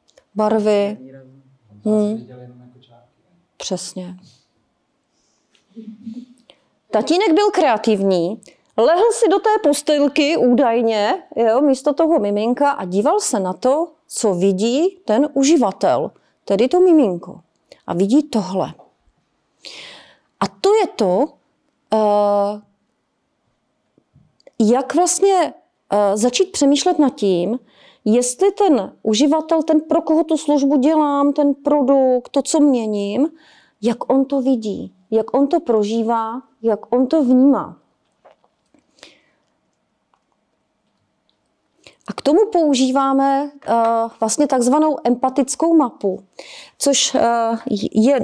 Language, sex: Czech, female